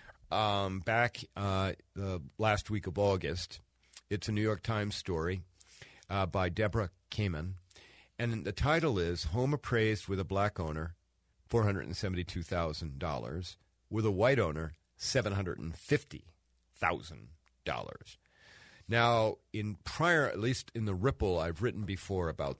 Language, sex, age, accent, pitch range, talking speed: English, male, 50-69, American, 85-110 Hz, 120 wpm